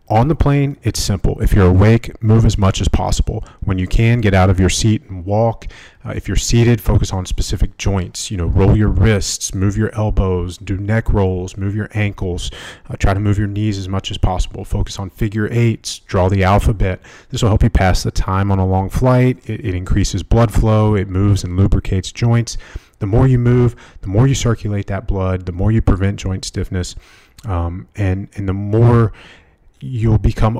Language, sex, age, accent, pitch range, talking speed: English, male, 30-49, American, 95-110 Hz, 210 wpm